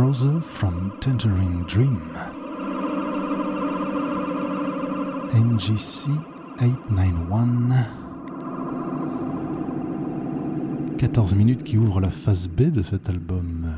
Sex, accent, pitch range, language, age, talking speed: male, French, 90-125 Hz, French, 40-59, 70 wpm